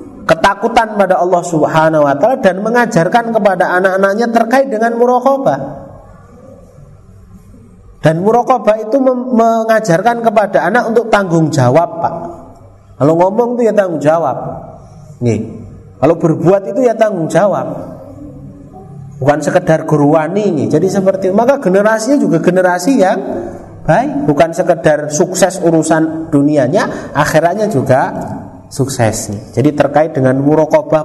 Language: Indonesian